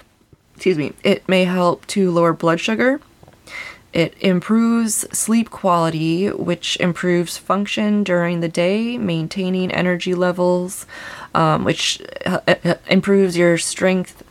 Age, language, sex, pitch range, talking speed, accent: 20-39, English, female, 160-190 Hz, 115 wpm, American